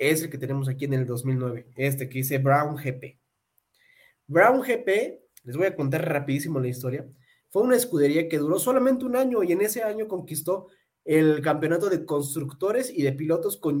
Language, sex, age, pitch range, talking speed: Spanish, male, 30-49, 140-210 Hz, 185 wpm